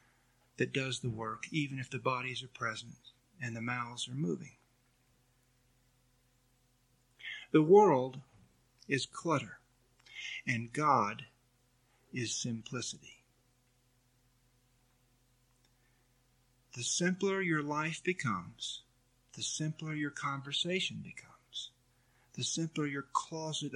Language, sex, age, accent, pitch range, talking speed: English, male, 50-69, American, 125-145 Hz, 95 wpm